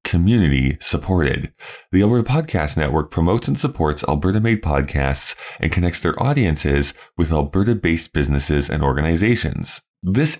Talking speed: 120 wpm